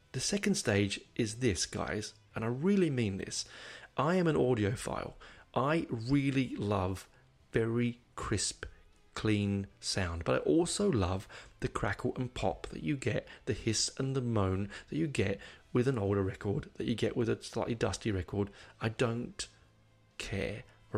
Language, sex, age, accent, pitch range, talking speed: English, male, 30-49, British, 100-125 Hz, 160 wpm